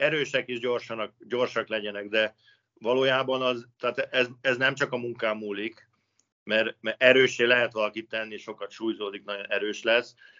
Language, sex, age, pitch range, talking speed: Hungarian, male, 50-69, 110-125 Hz, 155 wpm